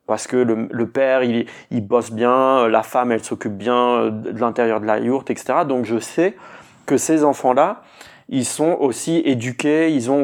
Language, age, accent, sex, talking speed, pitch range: French, 30-49, French, male, 190 wpm, 120-160 Hz